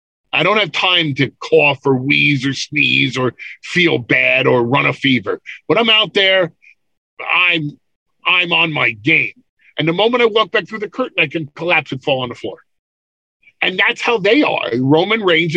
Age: 50-69